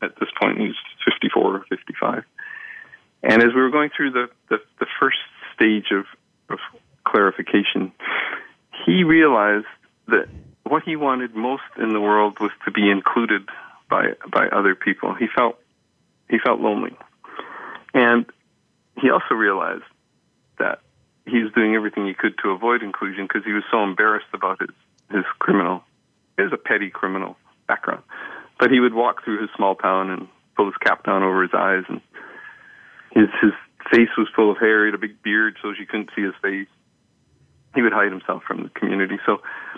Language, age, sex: English, 40-59, male